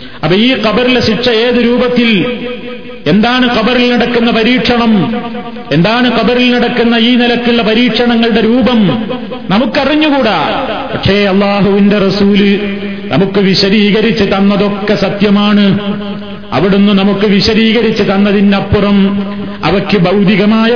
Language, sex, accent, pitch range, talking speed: Malayalam, male, native, 200-225 Hz, 90 wpm